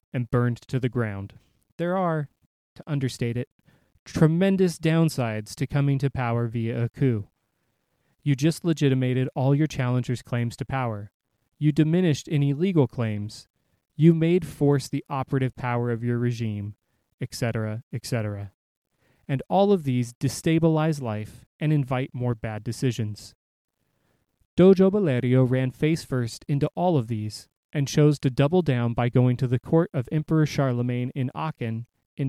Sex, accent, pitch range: male, American, 120-155 Hz